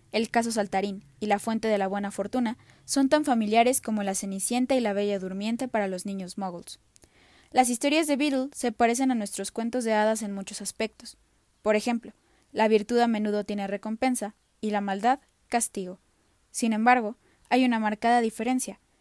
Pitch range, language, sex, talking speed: 200-240 Hz, Spanish, female, 175 wpm